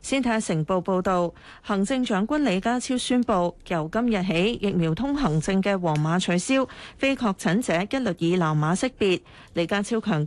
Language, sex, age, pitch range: Chinese, female, 40-59, 165-225 Hz